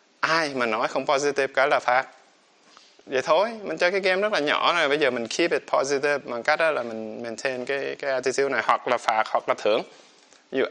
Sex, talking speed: male, 230 wpm